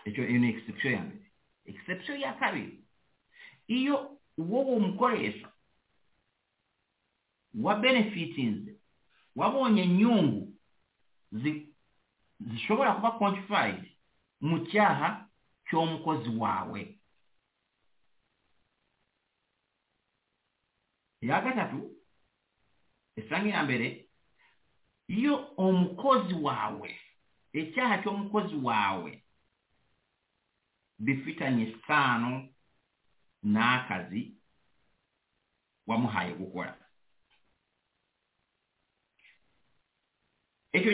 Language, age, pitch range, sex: English, 60-79, 150-215 Hz, male